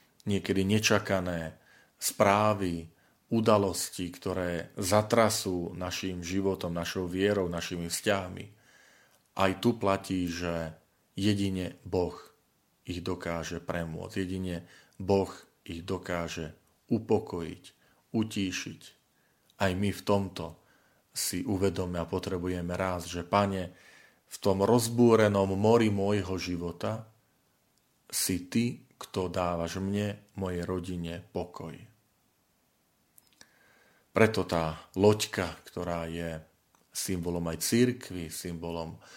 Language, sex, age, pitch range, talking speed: Slovak, male, 40-59, 90-105 Hz, 95 wpm